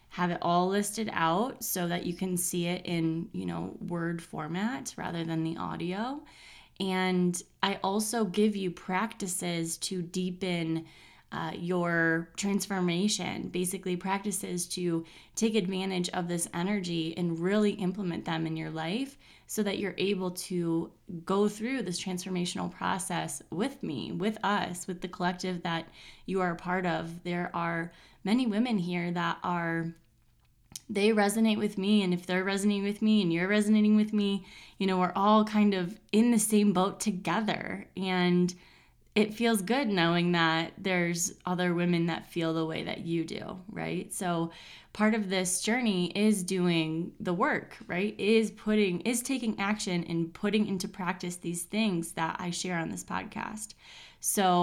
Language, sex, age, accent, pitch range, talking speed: English, female, 20-39, American, 175-205 Hz, 160 wpm